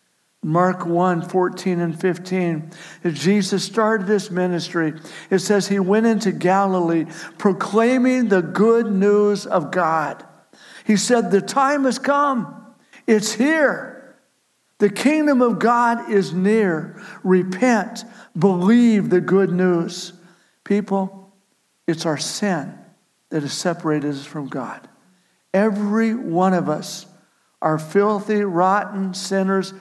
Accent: American